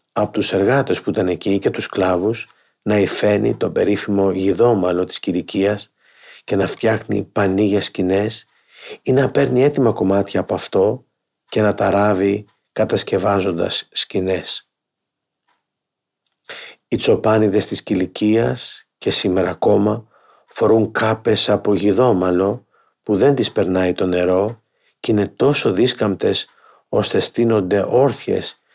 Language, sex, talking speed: Greek, male, 120 wpm